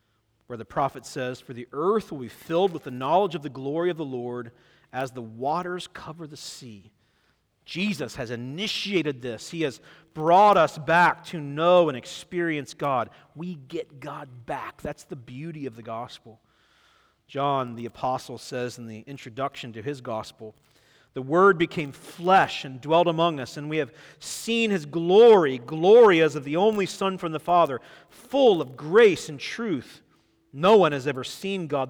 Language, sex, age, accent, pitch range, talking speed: English, male, 40-59, American, 120-175 Hz, 175 wpm